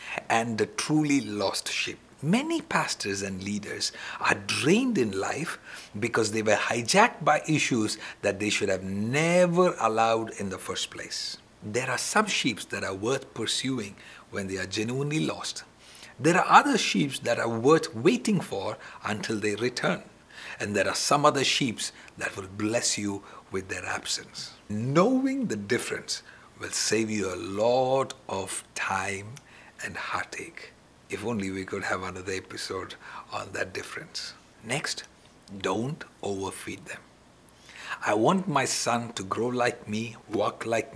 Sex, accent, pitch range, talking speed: male, Indian, 105-150 Hz, 150 wpm